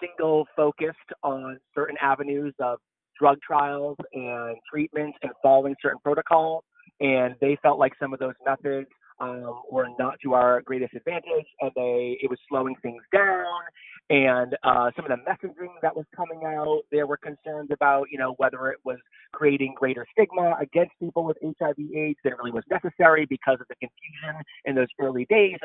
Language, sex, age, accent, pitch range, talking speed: English, male, 30-49, American, 130-175 Hz, 170 wpm